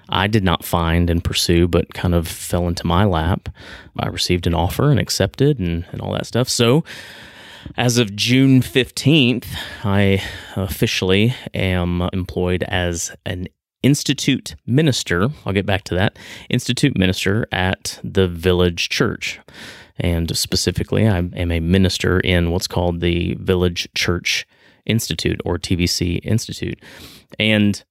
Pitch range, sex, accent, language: 90-115 Hz, male, American, English